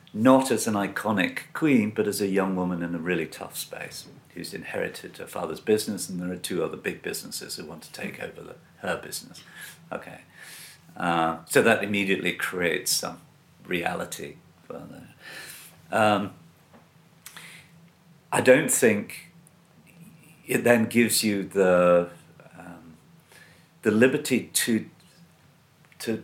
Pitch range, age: 90-155 Hz, 50-69